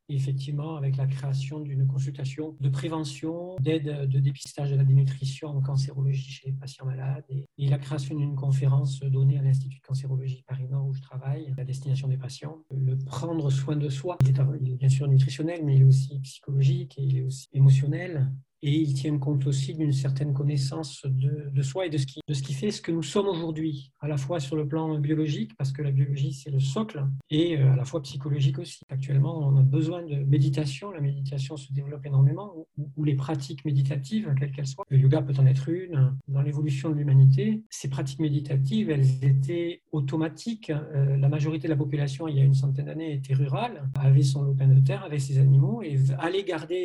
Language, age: French, 40-59